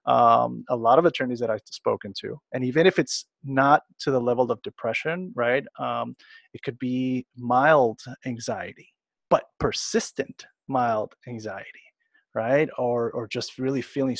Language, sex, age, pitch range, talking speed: English, male, 30-49, 115-145 Hz, 150 wpm